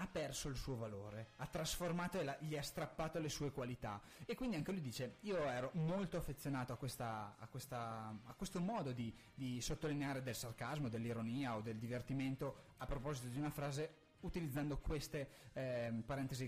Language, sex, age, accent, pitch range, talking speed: Italian, male, 20-39, native, 115-150 Hz, 165 wpm